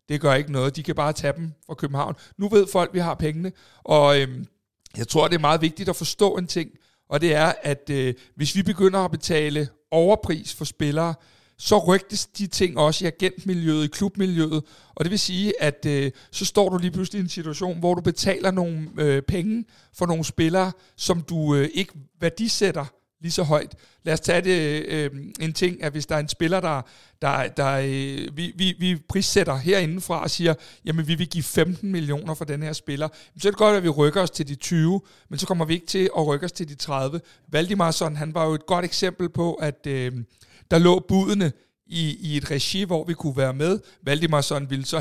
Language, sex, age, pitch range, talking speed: Danish, male, 60-79, 150-185 Hz, 220 wpm